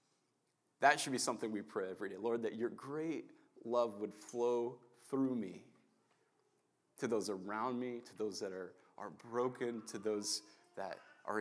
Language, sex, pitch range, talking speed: English, male, 105-135 Hz, 165 wpm